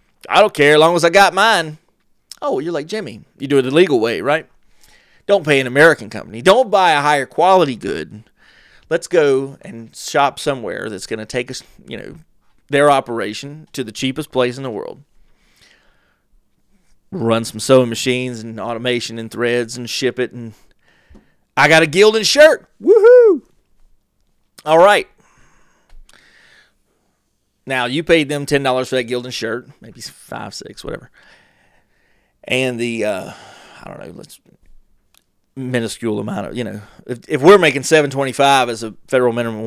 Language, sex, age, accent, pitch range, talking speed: English, male, 30-49, American, 115-175 Hz, 165 wpm